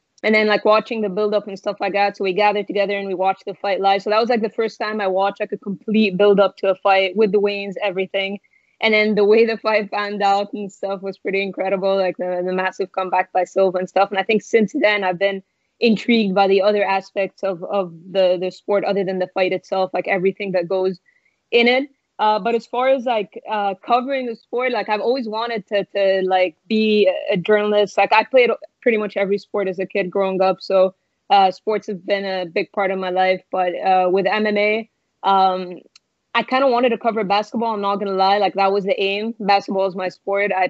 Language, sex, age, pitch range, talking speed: English, female, 20-39, 190-215 Hz, 235 wpm